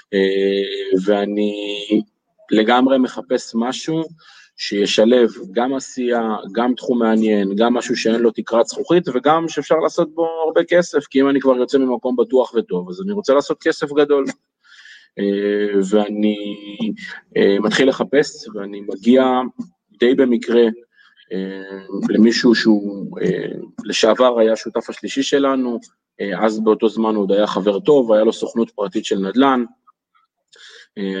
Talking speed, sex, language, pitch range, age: 135 wpm, male, Hebrew, 105-130 Hz, 20-39